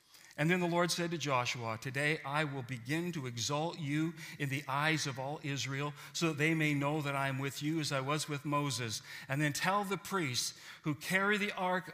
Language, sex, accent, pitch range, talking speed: English, male, American, 145-195 Hz, 220 wpm